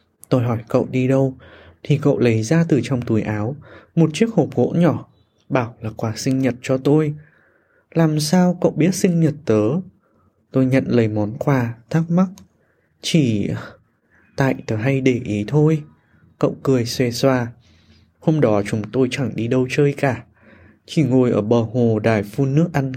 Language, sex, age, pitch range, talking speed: Vietnamese, male, 20-39, 115-155 Hz, 180 wpm